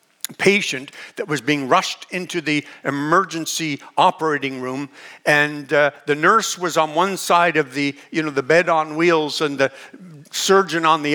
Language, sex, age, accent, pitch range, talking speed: English, male, 50-69, American, 150-195 Hz, 165 wpm